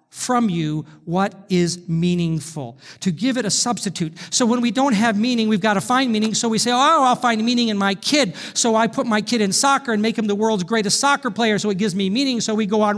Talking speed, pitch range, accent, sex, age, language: 255 wpm, 145-220 Hz, American, male, 50-69, English